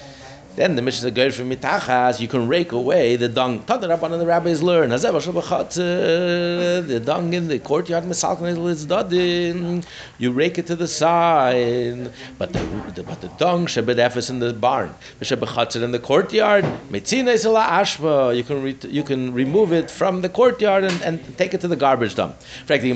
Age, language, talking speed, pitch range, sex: 60-79, English, 185 wpm, 125-185 Hz, male